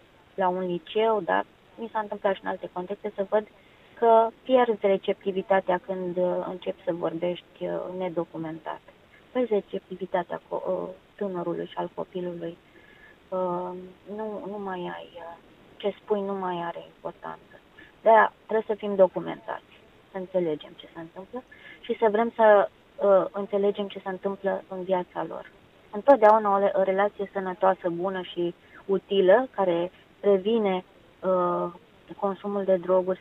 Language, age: Romanian, 20-39